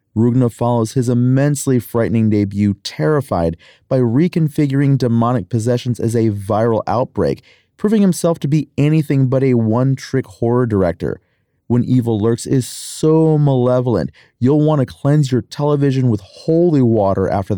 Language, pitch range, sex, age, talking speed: English, 105-130 Hz, male, 30-49, 140 wpm